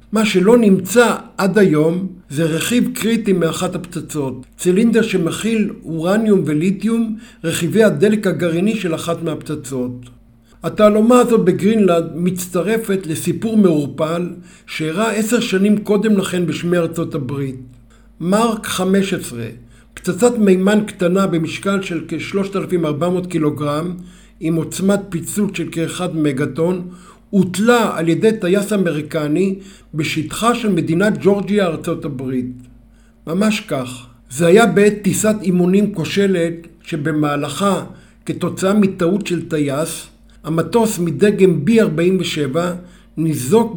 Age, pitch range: 60-79, 160-205 Hz